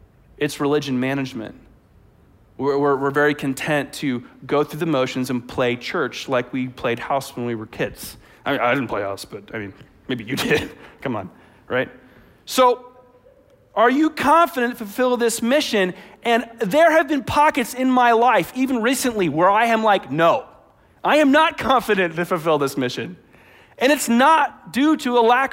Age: 40-59